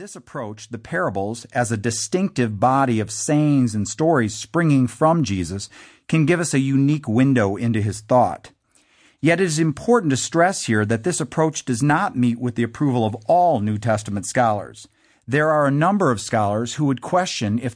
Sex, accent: male, American